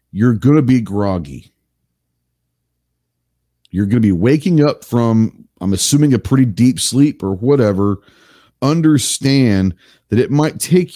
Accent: American